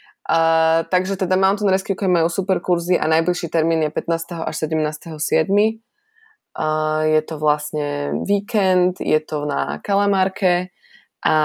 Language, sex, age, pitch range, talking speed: Slovak, female, 20-39, 150-180 Hz, 125 wpm